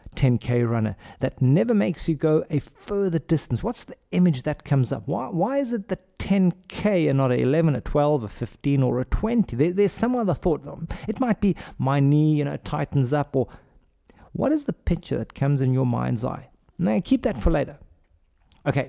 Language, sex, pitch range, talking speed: English, male, 120-170 Hz, 205 wpm